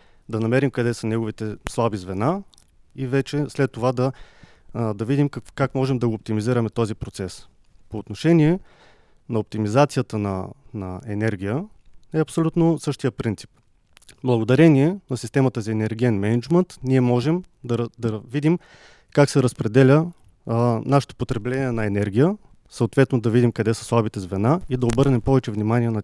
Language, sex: Bulgarian, male